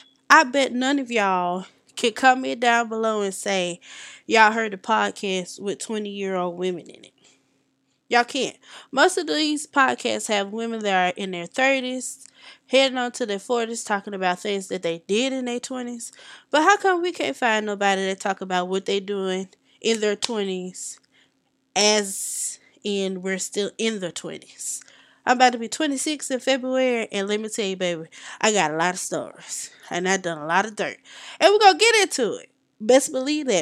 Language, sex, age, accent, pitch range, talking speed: English, female, 20-39, American, 200-285 Hz, 190 wpm